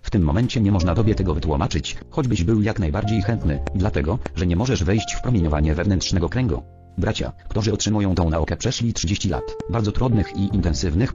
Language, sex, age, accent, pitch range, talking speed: English, male, 40-59, Polish, 85-110 Hz, 185 wpm